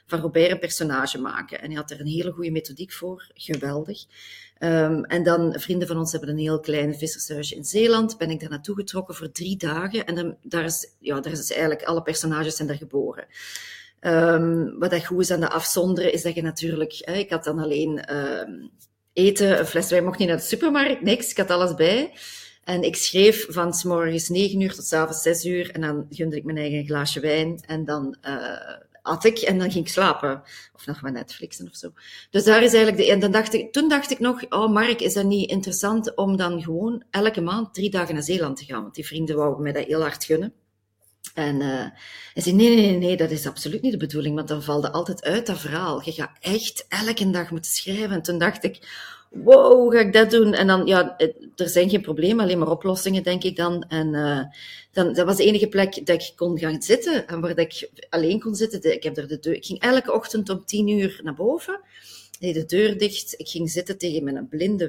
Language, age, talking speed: Dutch, 30-49, 230 wpm